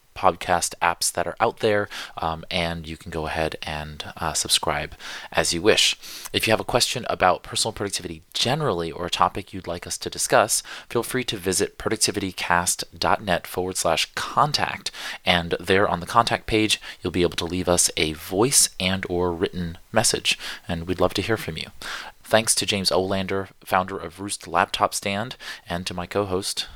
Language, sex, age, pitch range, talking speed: English, male, 30-49, 85-105 Hz, 180 wpm